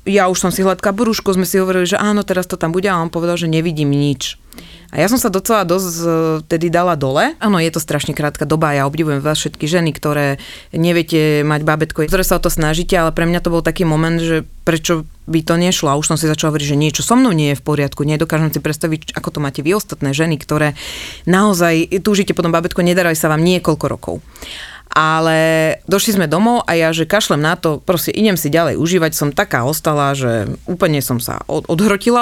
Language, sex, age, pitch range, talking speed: Slovak, female, 30-49, 155-190 Hz, 220 wpm